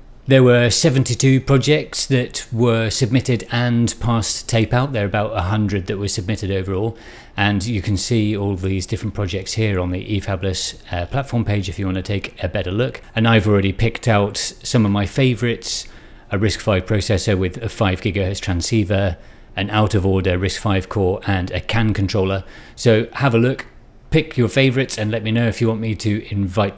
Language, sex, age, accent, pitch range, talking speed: English, male, 40-59, British, 100-120 Hz, 195 wpm